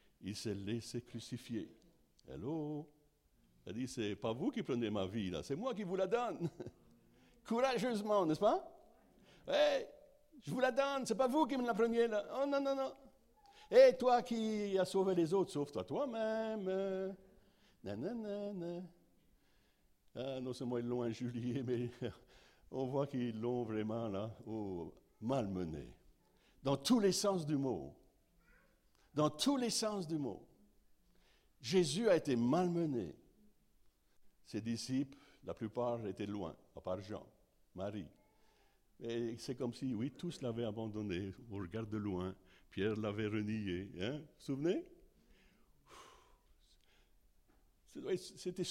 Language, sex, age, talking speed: French, male, 60-79, 135 wpm